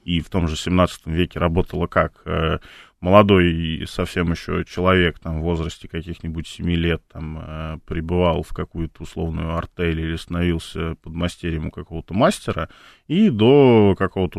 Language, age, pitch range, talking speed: Russian, 20-39, 80-95 Hz, 140 wpm